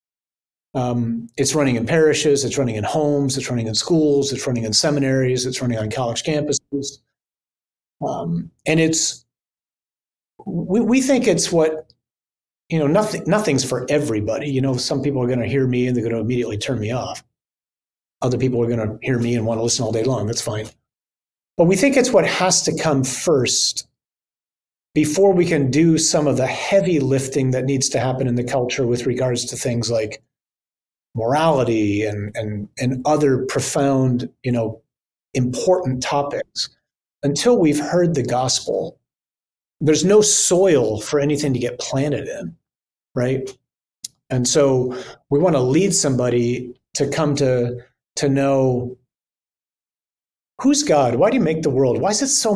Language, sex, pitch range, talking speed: English, male, 125-155 Hz, 170 wpm